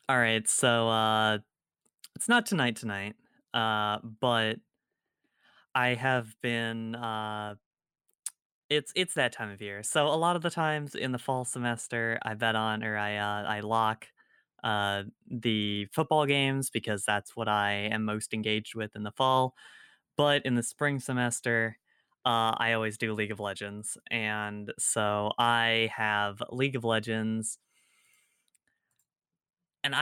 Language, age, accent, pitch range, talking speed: English, 20-39, American, 110-135 Hz, 145 wpm